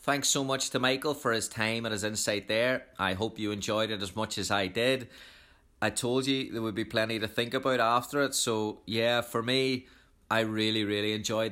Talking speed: 220 wpm